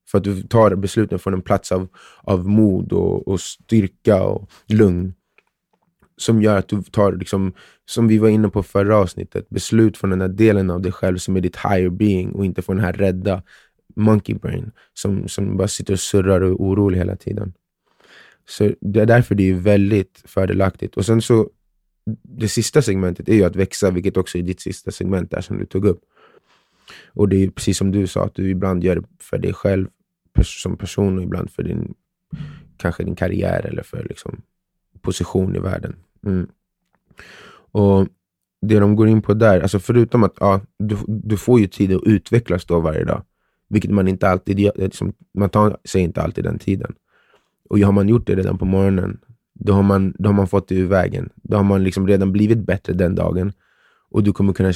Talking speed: 200 wpm